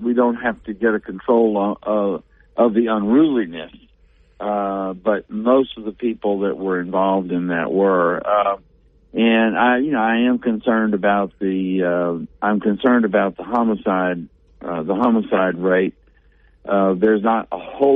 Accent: American